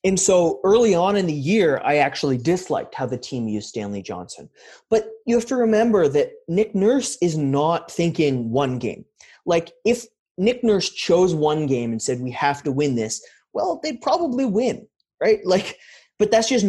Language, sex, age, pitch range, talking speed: English, male, 30-49, 135-190 Hz, 185 wpm